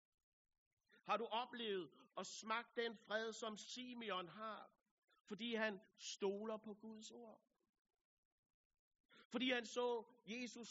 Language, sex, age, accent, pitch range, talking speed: Danish, male, 60-79, native, 195-235 Hz, 110 wpm